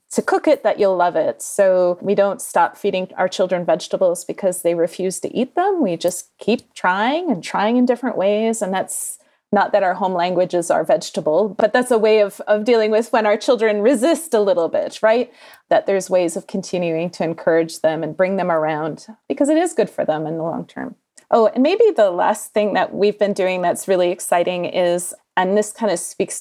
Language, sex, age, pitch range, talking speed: English, female, 30-49, 180-220 Hz, 220 wpm